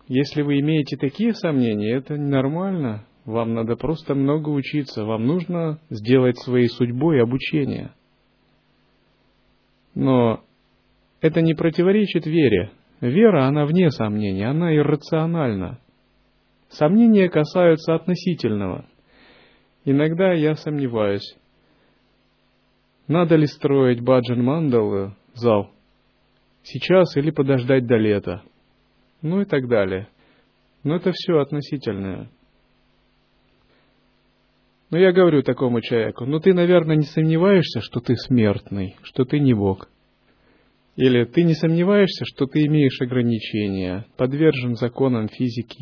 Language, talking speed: Russian, 105 wpm